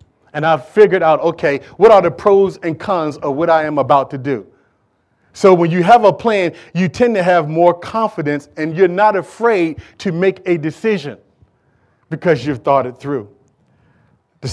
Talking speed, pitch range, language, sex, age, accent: 180 wpm, 125-175 Hz, English, male, 40-59, American